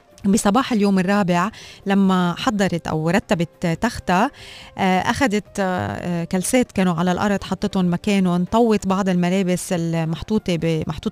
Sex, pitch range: female, 180-220 Hz